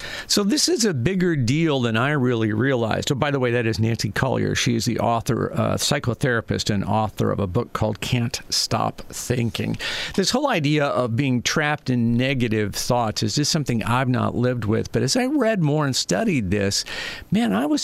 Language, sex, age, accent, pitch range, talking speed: English, male, 50-69, American, 115-140 Hz, 200 wpm